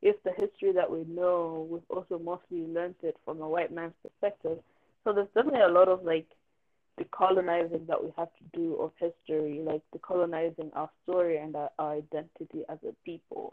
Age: 20-39